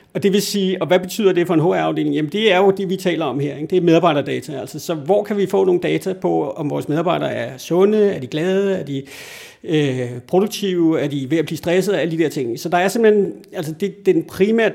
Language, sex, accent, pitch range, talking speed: Danish, male, native, 145-180 Hz, 270 wpm